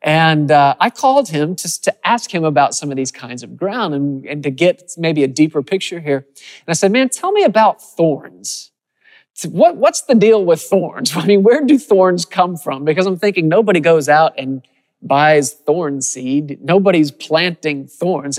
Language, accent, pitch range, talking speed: English, American, 145-200 Hz, 195 wpm